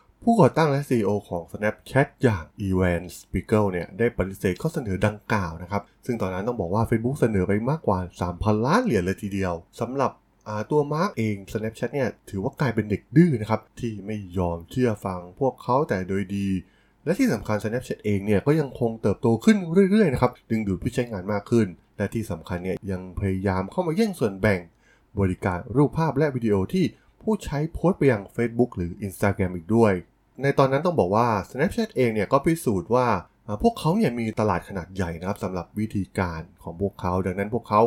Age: 20-39